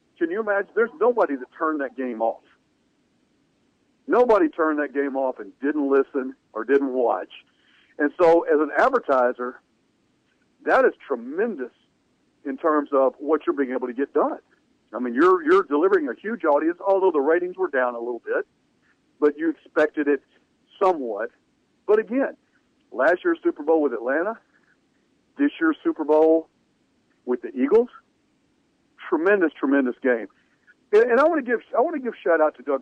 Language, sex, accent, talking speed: English, male, American, 165 wpm